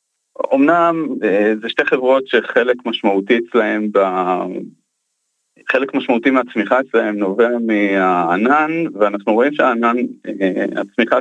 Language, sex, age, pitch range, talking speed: Hebrew, male, 20-39, 105-130 Hz, 95 wpm